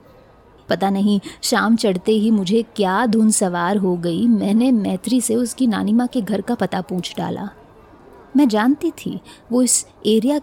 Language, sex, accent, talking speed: Hindi, female, native, 165 wpm